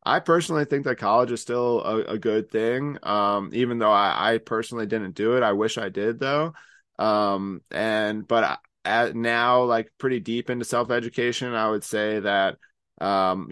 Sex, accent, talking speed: male, American, 180 wpm